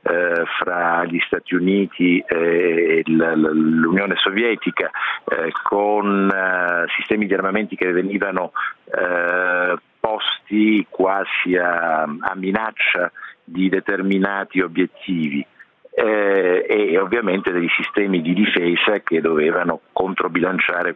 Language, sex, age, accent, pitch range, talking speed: Italian, male, 50-69, native, 90-105 Hz, 85 wpm